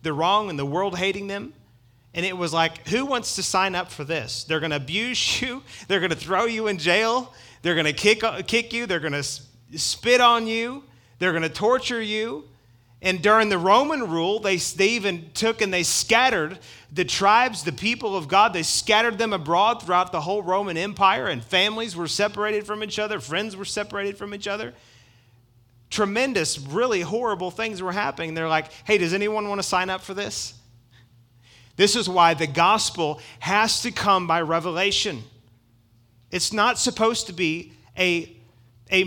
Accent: American